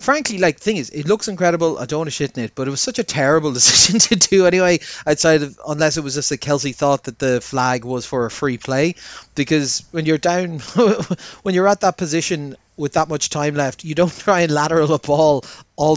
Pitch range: 135-165 Hz